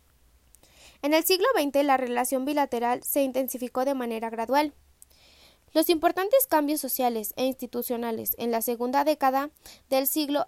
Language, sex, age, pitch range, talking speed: Spanish, female, 20-39, 240-295 Hz, 135 wpm